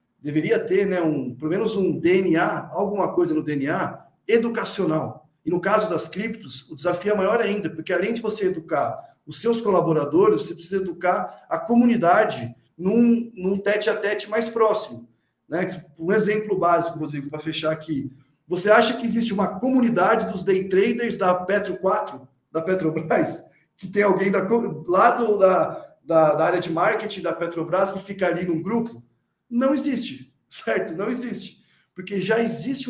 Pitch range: 160-210 Hz